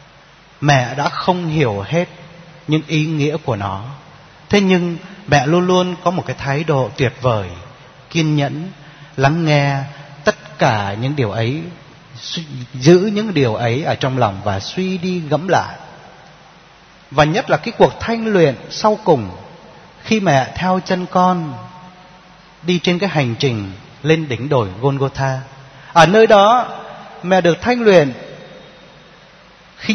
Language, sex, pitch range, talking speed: Vietnamese, male, 130-175 Hz, 150 wpm